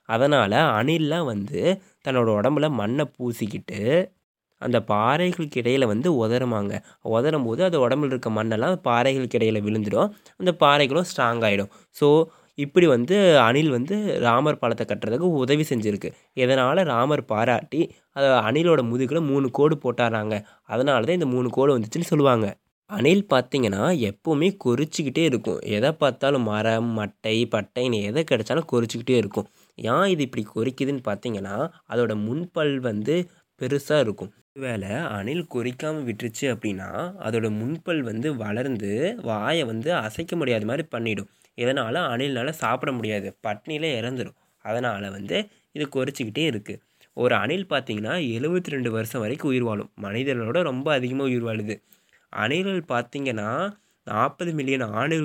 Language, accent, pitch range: Tamil, native, 110-150 Hz